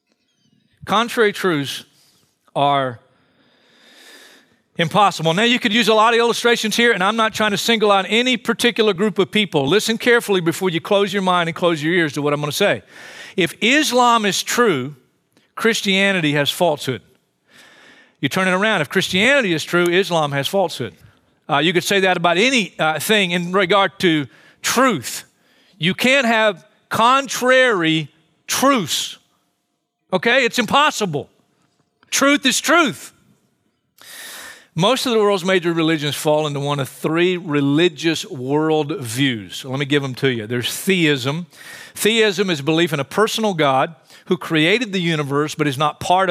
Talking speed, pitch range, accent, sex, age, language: 155 wpm, 145-210 Hz, American, male, 40-59, English